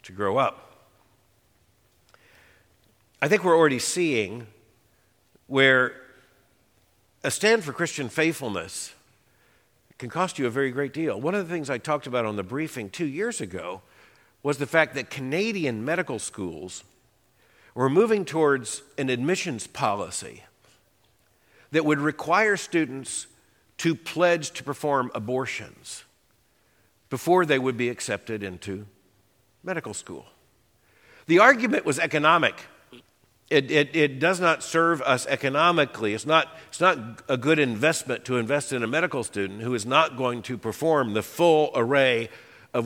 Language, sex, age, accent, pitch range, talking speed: English, male, 50-69, American, 115-160 Hz, 140 wpm